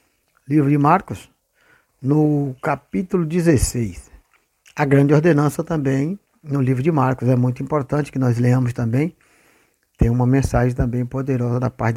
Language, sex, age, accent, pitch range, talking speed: Portuguese, male, 60-79, Brazilian, 130-175 Hz, 140 wpm